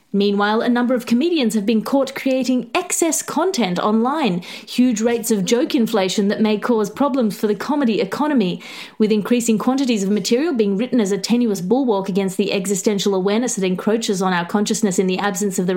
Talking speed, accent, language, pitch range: 190 wpm, Australian, English, 200-255 Hz